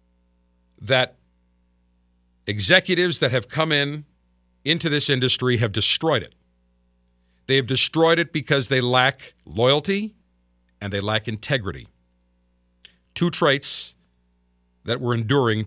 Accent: American